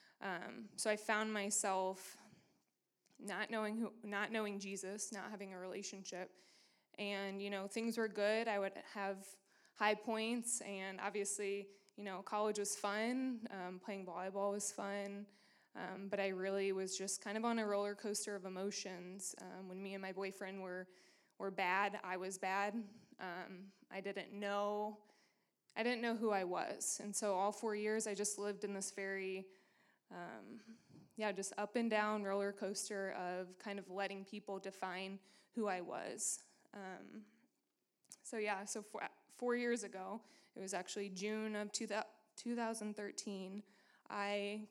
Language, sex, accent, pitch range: English, female, American, 195-210 Hz